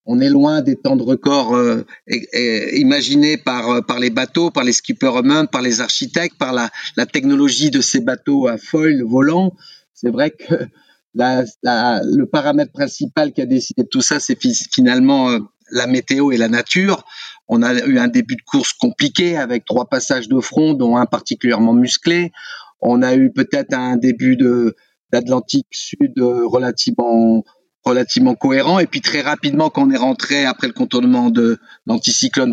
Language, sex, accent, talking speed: French, male, French, 180 wpm